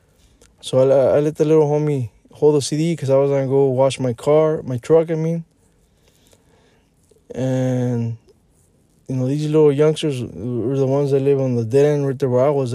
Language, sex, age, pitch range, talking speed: English, male, 20-39, 120-145 Hz, 200 wpm